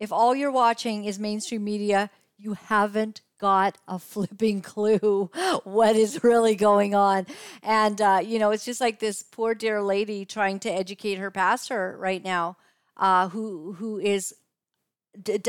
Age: 50-69